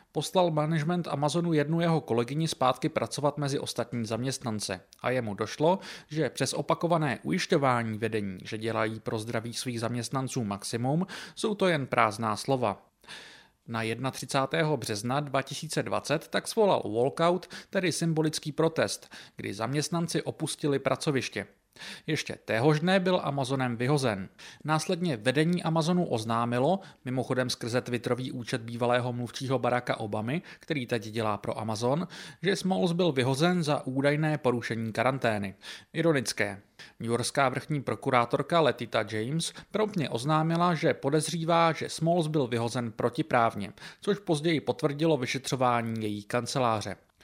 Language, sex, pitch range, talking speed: English, male, 120-165 Hz, 125 wpm